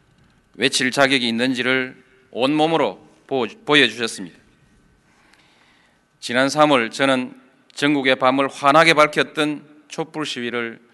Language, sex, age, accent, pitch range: Korean, male, 40-59, native, 125-155 Hz